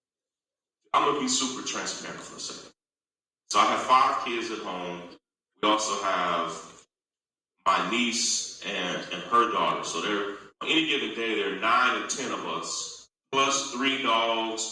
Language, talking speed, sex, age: English, 160 wpm, male, 30-49